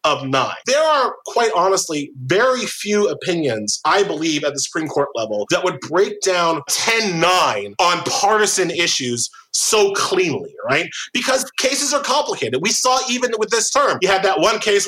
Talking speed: 170 wpm